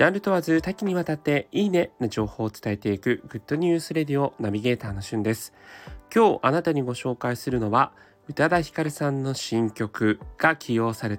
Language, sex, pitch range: Japanese, male, 105-160 Hz